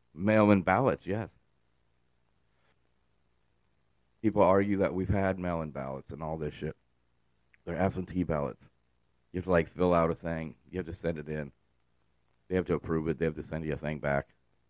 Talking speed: 180 wpm